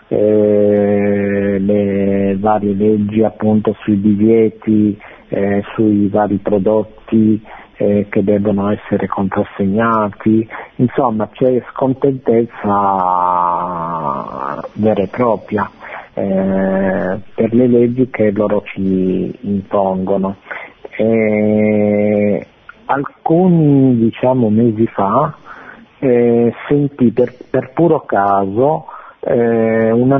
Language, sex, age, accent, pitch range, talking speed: Italian, male, 50-69, native, 100-120 Hz, 80 wpm